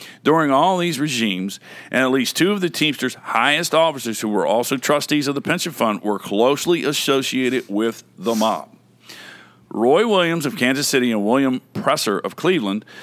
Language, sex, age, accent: English, male, 50-69, American